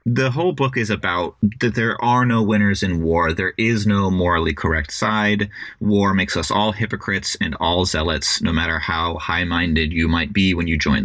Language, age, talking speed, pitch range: English, 30-49, 195 wpm, 90-115 Hz